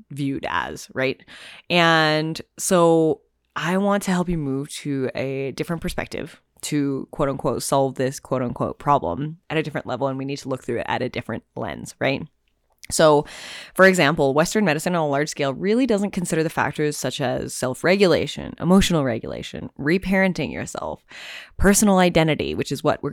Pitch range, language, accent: 140-185 Hz, English, American